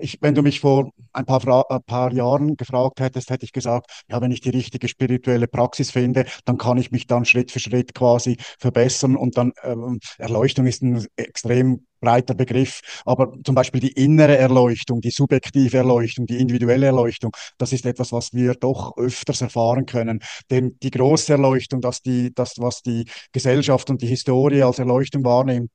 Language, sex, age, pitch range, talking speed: German, male, 50-69, 120-140 Hz, 185 wpm